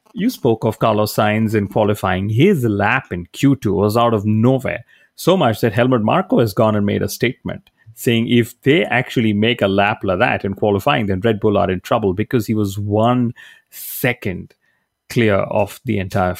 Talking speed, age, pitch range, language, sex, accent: 190 wpm, 30-49, 100-120 Hz, English, male, Indian